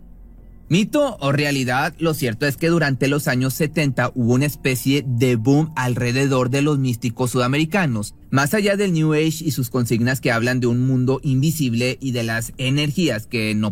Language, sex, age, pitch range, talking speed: Spanish, male, 30-49, 115-145 Hz, 180 wpm